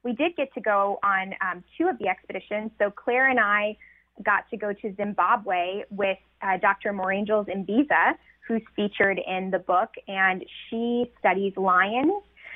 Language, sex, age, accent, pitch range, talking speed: English, female, 20-39, American, 195-235 Hz, 160 wpm